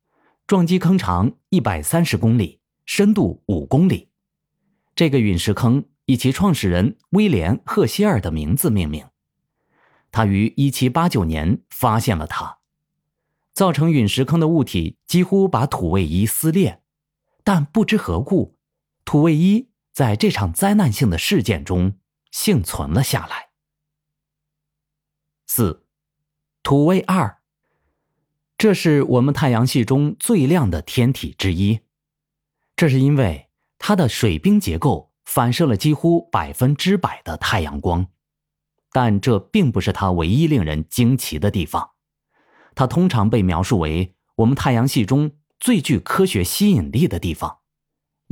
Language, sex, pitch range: Chinese, male, 105-165 Hz